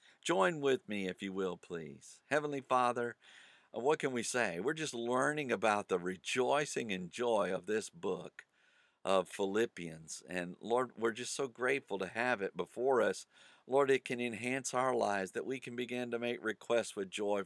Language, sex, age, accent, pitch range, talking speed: English, male, 50-69, American, 100-135 Hz, 180 wpm